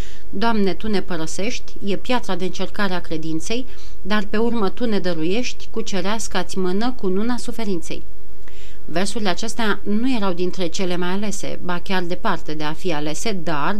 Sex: female